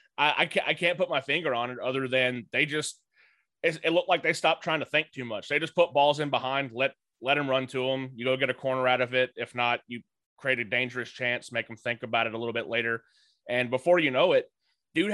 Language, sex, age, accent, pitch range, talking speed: English, male, 20-39, American, 120-145 Hz, 265 wpm